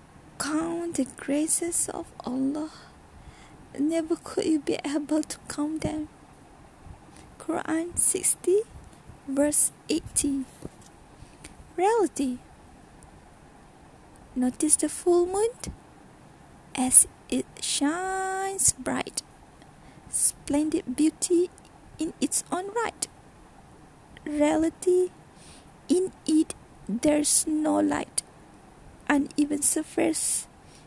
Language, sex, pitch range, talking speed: Malay, female, 290-355 Hz, 75 wpm